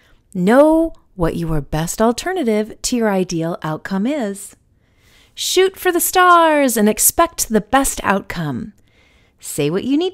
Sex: female